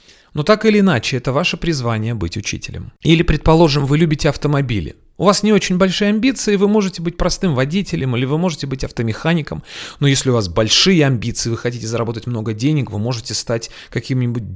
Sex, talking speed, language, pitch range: male, 185 wpm, Russian, 110-145 Hz